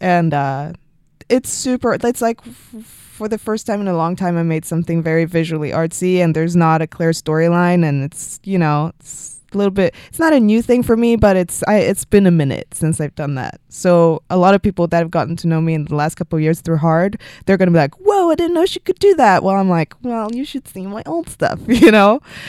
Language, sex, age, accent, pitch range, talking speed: English, female, 20-39, American, 150-190 Hz, 255 wpm